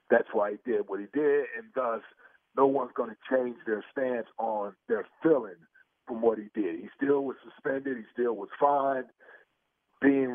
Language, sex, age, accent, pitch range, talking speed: English, male, 40-59, American, 120-140 Hz, 185 wpm